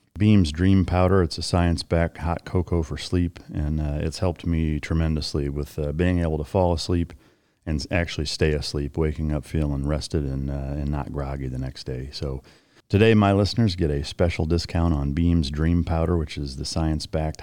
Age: 40-59